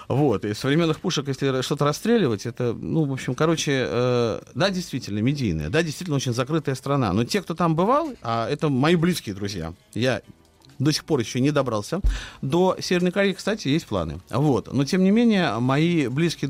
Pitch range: 125-185 Hz